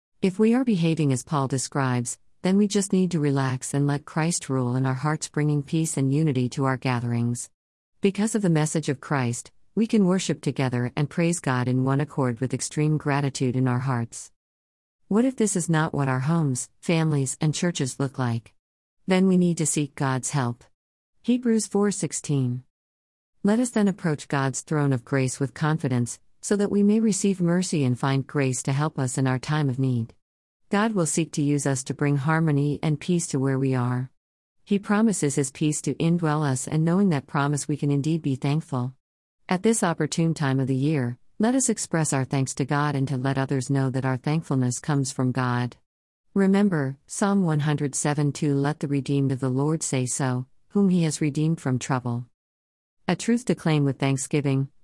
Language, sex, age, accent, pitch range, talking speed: English, female, 50-69, American, 130-165 Hz, 195 wpm